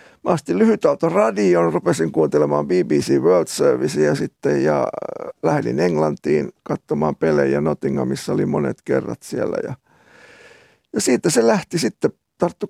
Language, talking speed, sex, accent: Finnish, 130 wpm, male, native